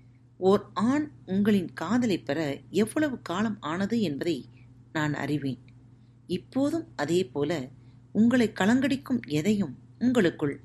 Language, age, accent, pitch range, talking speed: Tamil, 40-59, native, 125-205 Hz, 100 wpm